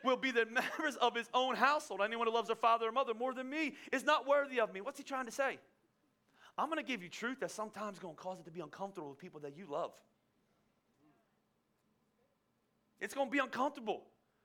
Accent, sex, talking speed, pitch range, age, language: American, male, 220 wpm, 205-275 Hz, 30-49, English